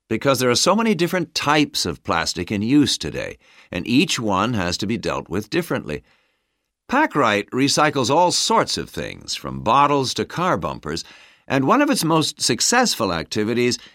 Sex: male